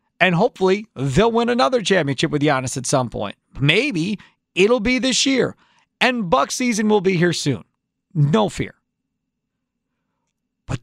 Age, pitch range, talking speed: 40-59, 165-255 Hz, 145 wpm